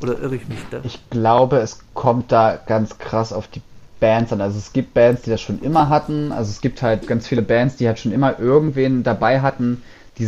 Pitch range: 110-125 Hz